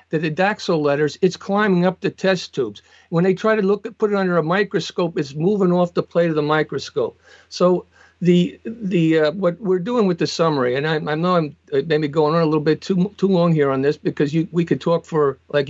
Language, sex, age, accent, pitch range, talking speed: English, male, 50-69, American, 150-180 Hz, 235 wpm